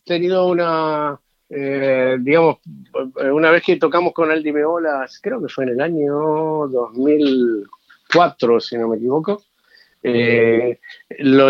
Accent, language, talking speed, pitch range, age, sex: Argentinian, Spanish, 125 wpm, 125-175 Hz, 50-69, male